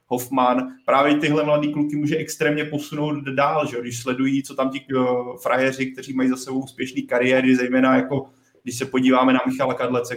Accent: native